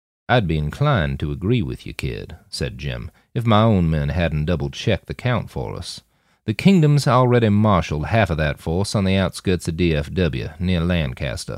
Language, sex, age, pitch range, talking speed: English, male, 40-59, 80-115 Hz, 180 wpm